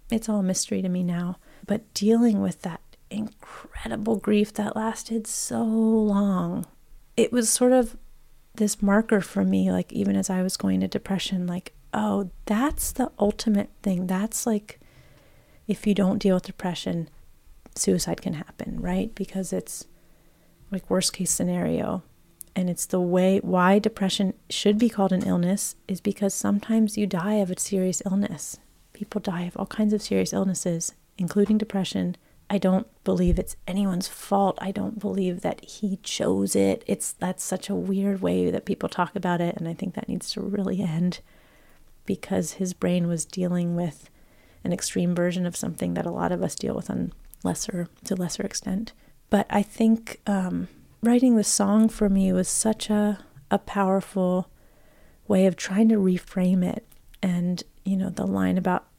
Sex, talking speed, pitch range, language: female, 170 wpm, 180-210 Hz, English